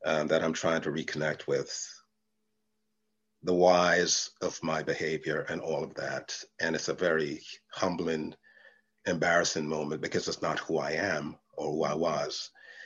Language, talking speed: English, 155 wpm